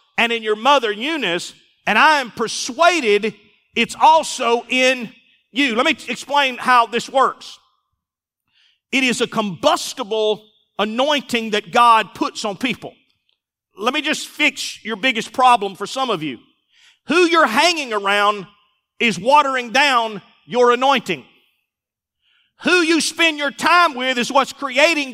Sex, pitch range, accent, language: male, 240-310 Hz, American, English